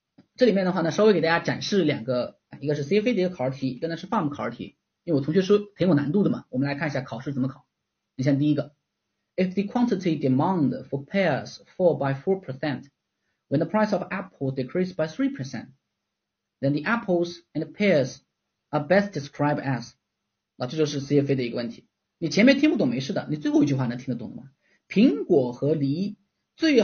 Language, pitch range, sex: Chinese, 140-215 Hz, male